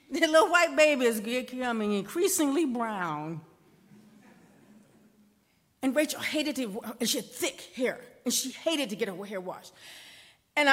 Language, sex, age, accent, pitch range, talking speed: English, female, 40-59, American, 215-315 Hz, 145 wpm